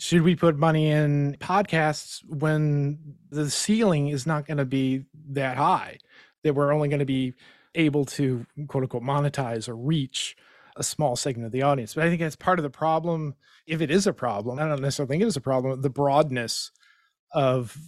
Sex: male